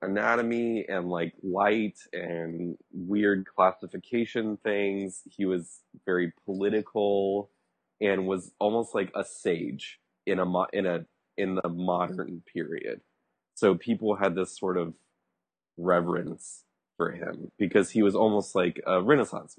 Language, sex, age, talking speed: English, male, 20-39, 130 wpm